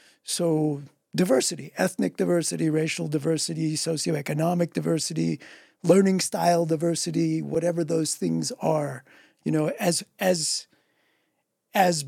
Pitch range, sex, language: 150-180 Hz, male, English